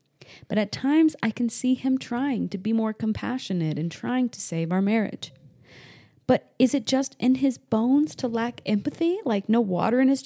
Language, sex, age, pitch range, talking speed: English, female, 30-49, 175-250 Hz, 195 wpm